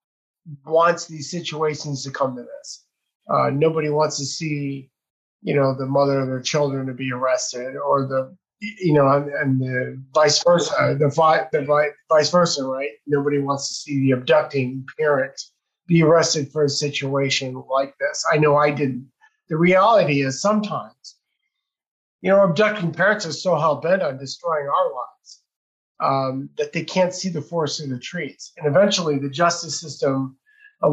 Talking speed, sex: 170 wpm, male